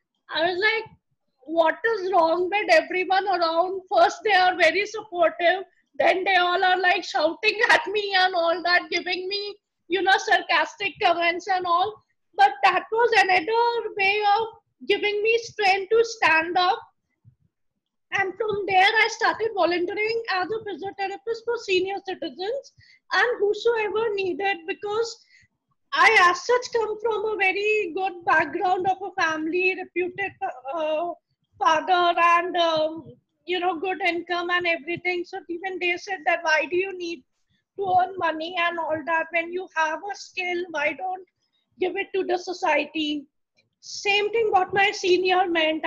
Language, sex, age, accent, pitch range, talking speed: English, female, 20-39, Indian, 345-405 Hz, 155 wpm